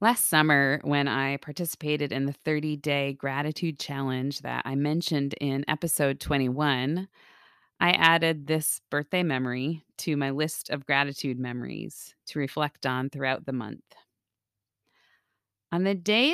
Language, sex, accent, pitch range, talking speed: English, female, American, 135-170 Hz, 130 wpm